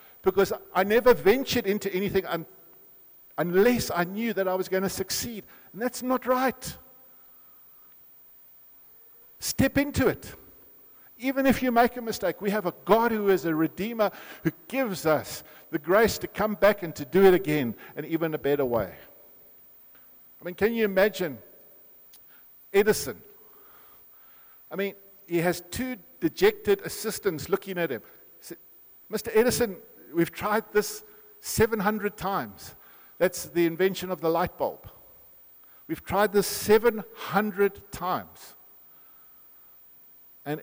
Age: 50-69